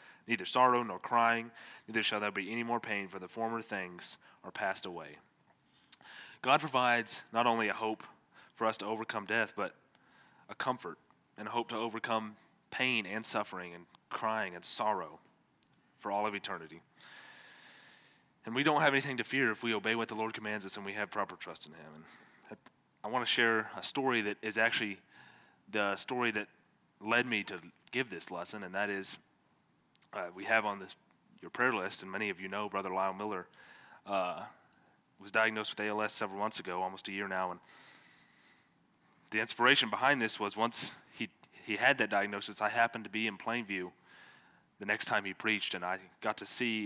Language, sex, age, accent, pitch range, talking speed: English, male, 30-49, American, 100-115 Hz, 190 wpm